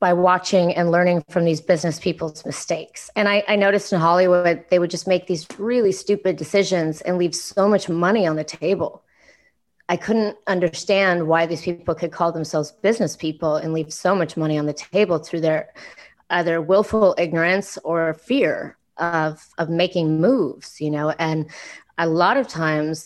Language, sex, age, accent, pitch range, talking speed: English, female, 30-49, American, 155-185 Hz, 180 wpm